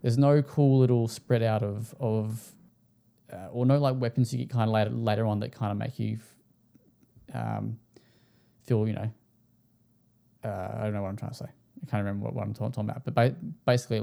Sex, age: male, 10-29